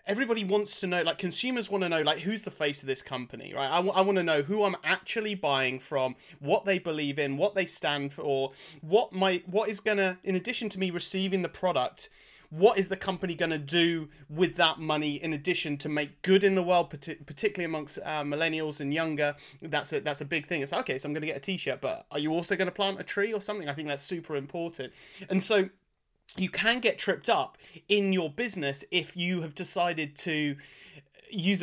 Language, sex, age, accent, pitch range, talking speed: English, male, 30-49, British, 145-185 Hz, 230 wpm